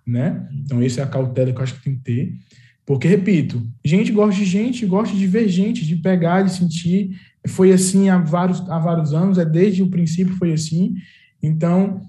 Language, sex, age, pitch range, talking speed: English, male, 20-39, 150-185 Hz, 205 wpm